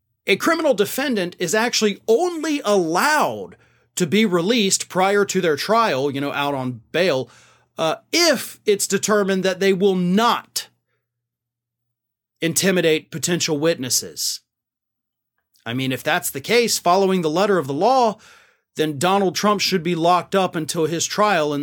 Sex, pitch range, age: male, 165-210 Hz, 30-49